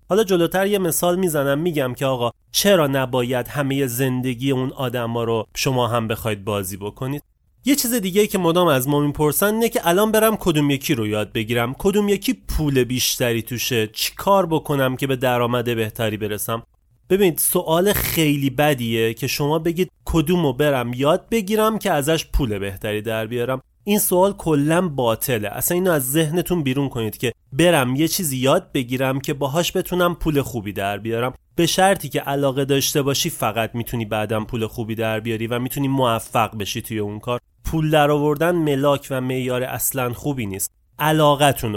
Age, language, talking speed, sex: 30-49, Persian, 170 wpm, male